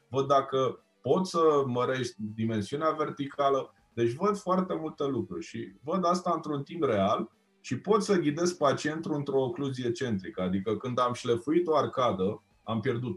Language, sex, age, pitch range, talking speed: Romanian, male, 20-39, 125-185 Hz, 155 wpm